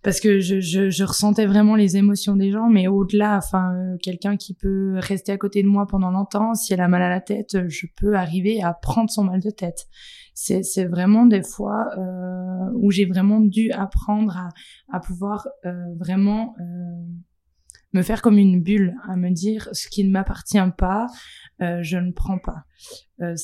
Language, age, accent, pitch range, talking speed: French, 20-39, French, 180-205 Hz, 195 wpm